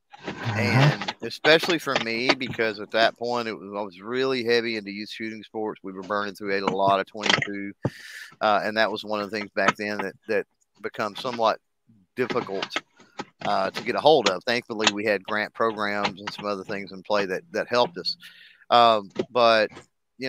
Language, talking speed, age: English, 190 wpm, 30-49